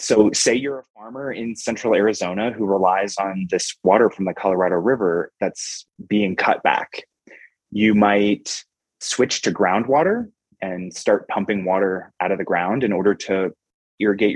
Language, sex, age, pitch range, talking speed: English, male, 20-39, 90-115 Hz, 160 wpm